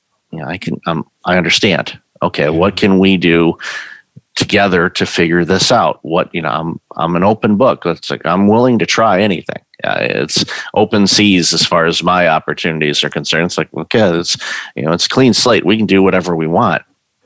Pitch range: 85-105 Hz